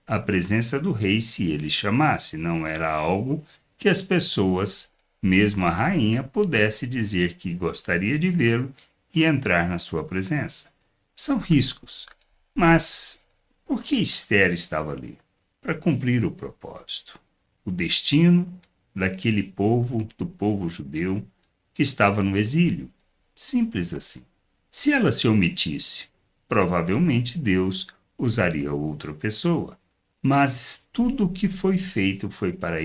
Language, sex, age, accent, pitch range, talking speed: Portuguese, male, 60-79, Brazilian, 95-145 Hz, 125 wpm